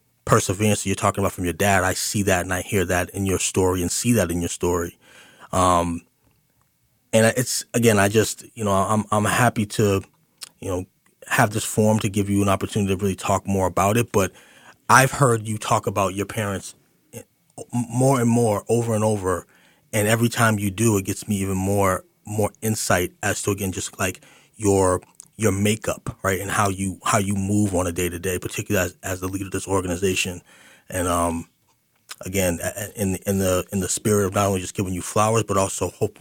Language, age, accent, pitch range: English, 30-49, American, 90-105 Hz